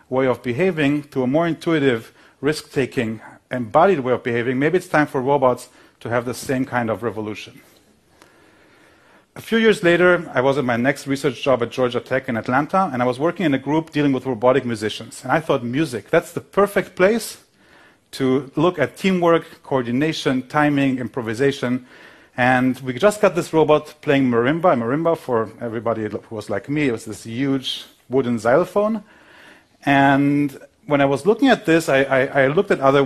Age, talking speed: 40-59, 180 wpm